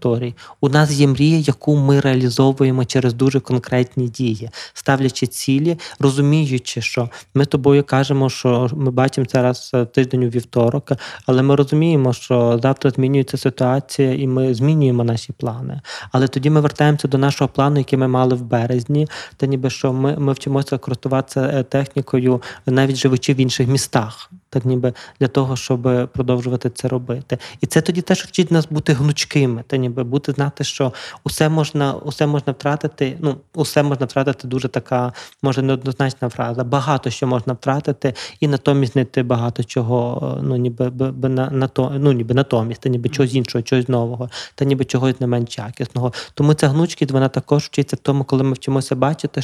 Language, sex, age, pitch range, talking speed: Ukrainian, male, 20-39, 125-140 Hz, 165 wpm